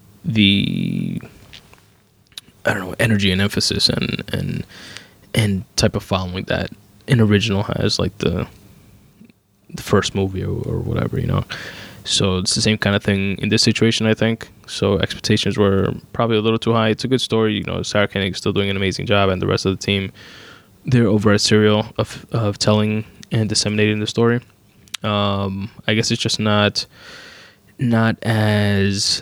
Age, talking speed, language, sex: 20-39, 175 wpm, English, male